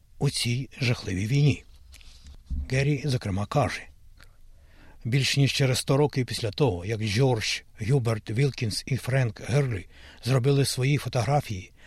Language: Ukrainian